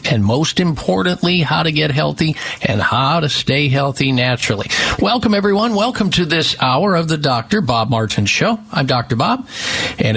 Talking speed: 170 wpm